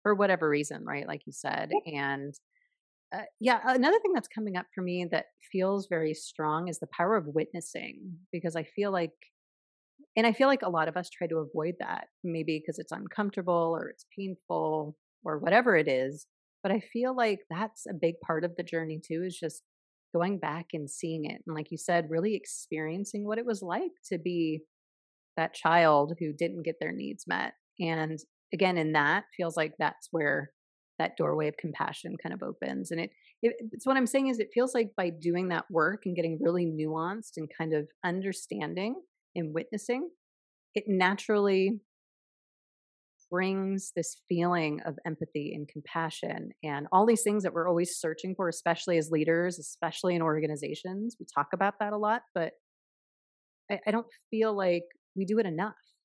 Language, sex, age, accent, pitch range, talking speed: English, female, 30-49, American, 160-200 Hz, 185 wpm